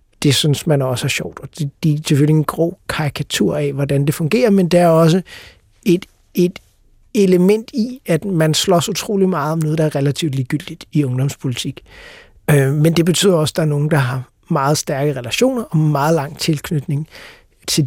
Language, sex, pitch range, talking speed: Danish, male, 140-170 Hz, 190 wpm